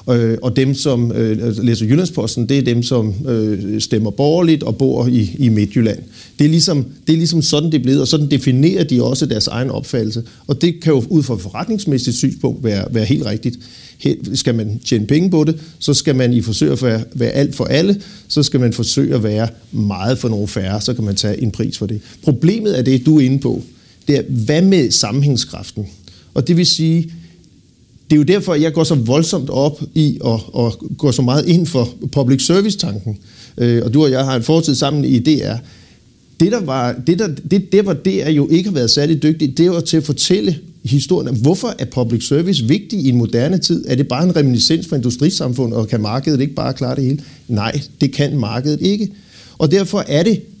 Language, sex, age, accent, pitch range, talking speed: Danish, male, 50-69, native, 120-160 Hz, 210 wpm